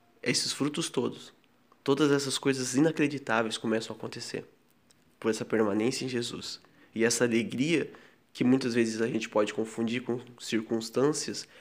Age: 20-39